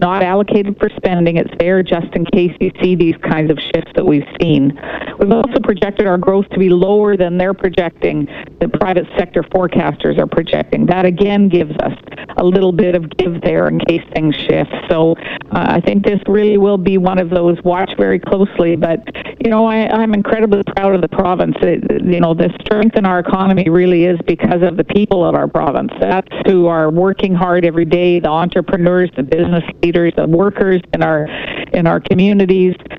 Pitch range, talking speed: 170-200 Hz, 200 wpm